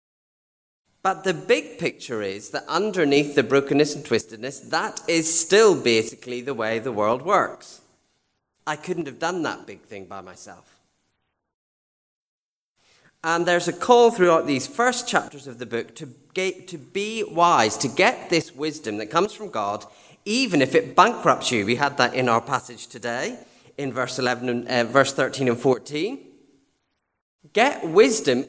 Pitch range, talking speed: 120-180 Hz, 160 wpm